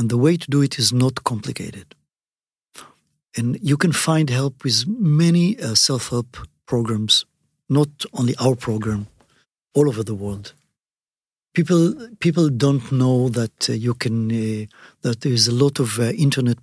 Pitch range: 115-145 Hz